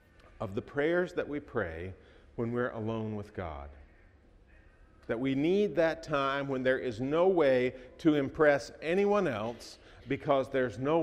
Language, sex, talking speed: English, male, 150 wpm